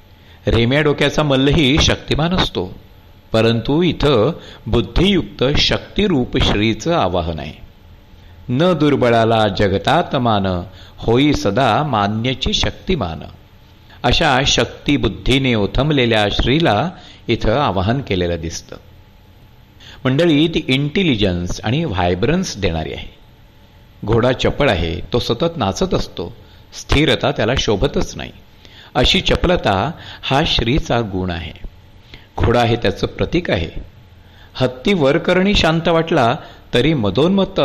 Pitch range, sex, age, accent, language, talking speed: 95-135 Hz, male, 50-69, native, Marathi, 100 wpm